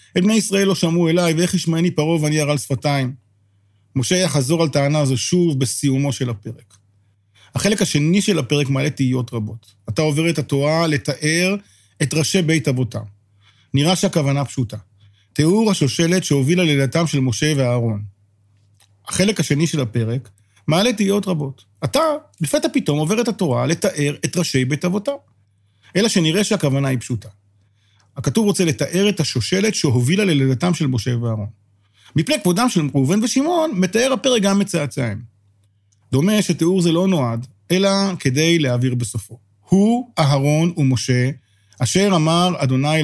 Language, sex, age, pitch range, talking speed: Hebrew, male, 40-59, 115-170 Hz, 145 wpm